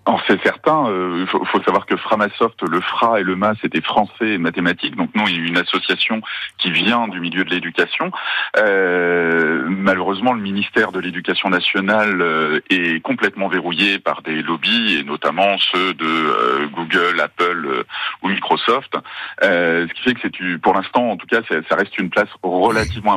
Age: 40-59